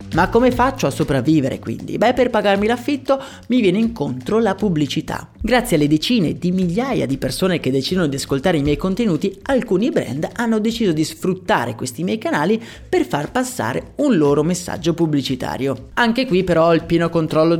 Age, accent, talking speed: 30-49, native, 175 wpm